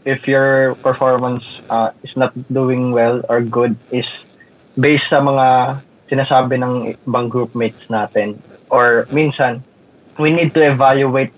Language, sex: Filipino, male